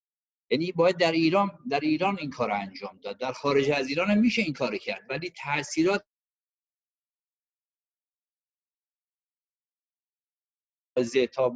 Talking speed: 110 wpm